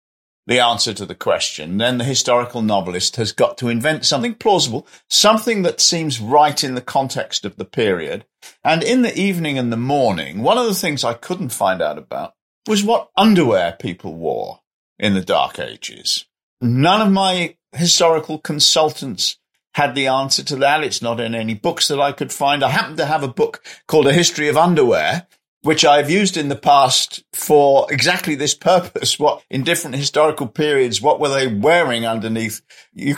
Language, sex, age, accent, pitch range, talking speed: English, male, 50-69, British, 120-170 Hz, 185 wpm